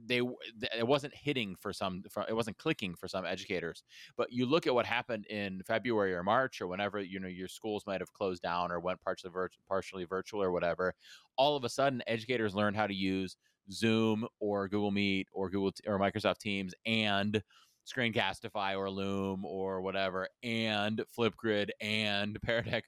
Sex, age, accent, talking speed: male, 30-49, American, 175 wpm